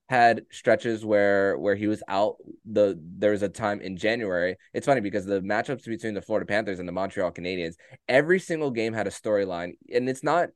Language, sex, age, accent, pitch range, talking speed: English, male, 20-39, American, 95-110 Hz, 205 wpm